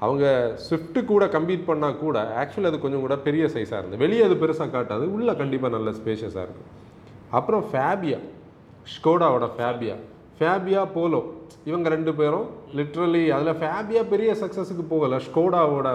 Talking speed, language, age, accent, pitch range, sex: 145 wpm, Tamil, 30-49, native, 135-175 Hz, male